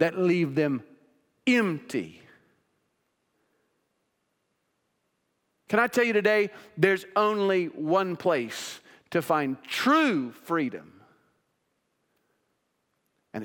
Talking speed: 80 wpm